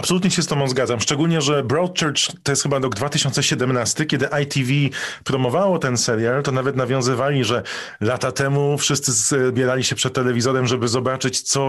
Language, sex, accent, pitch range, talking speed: Polish, male, native, 120-145 Hz, 165 wpm